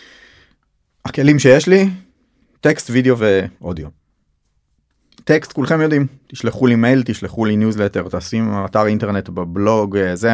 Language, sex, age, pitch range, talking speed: Hebrew, male, 30-49, 100-130 Hz, 115 wpm